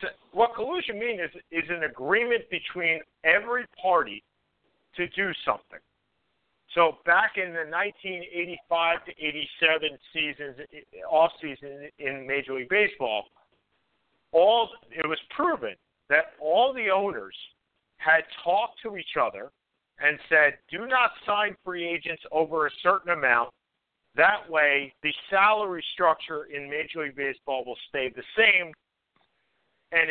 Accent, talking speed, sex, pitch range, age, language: American, 130 wpm, male, 150-210 Hz, 50-69, English